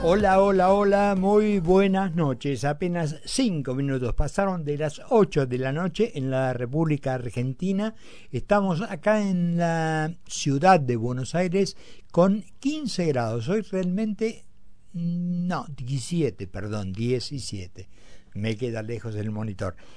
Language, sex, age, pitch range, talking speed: Spanish, male, 60-79, 120-170 Hz, 125 wpm